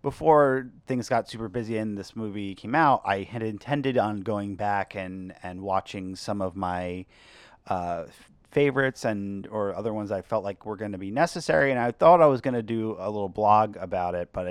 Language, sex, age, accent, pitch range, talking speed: English, male, 30-49, American, 95-125 Hz, 200 wpm